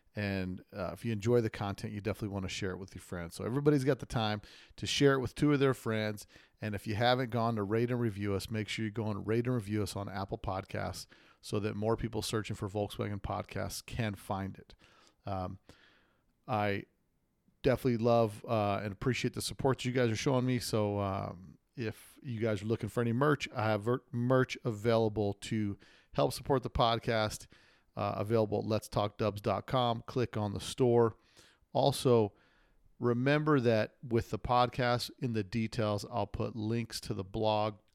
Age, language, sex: 40-59, English, male